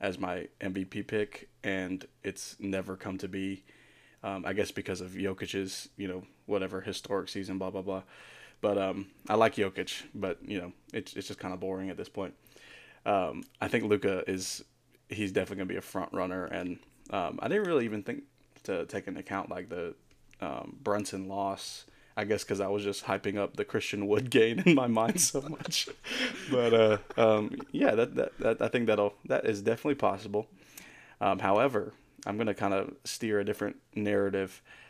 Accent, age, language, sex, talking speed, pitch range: American, 20-39, English, male, 195 wpm, 95-105 Hz